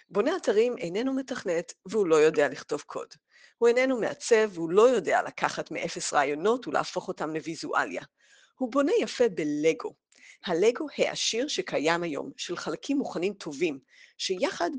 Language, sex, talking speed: Hebrew, female, 140 wpm